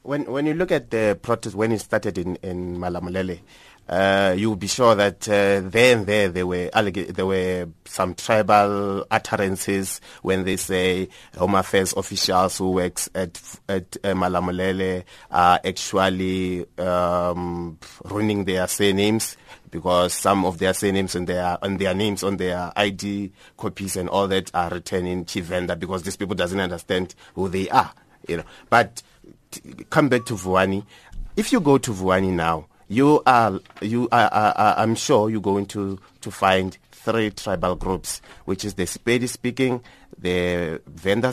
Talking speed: 170 wpm